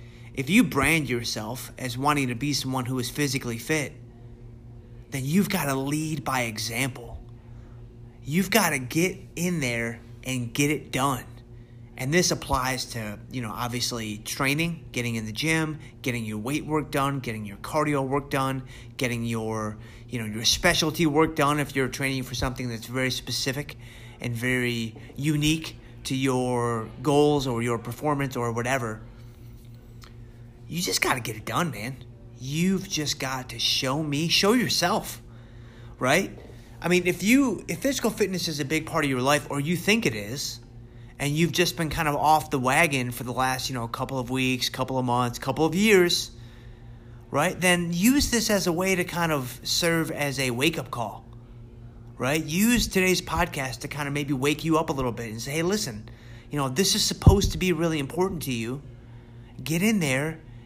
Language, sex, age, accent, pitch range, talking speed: English, male, 30-49, American, 120-155 Hz, 185 wpm